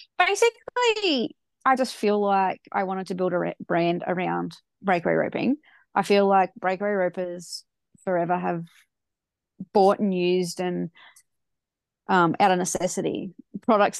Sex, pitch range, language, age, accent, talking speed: female, 175-210 Hz, English, 20-39, Australian, 135 wpm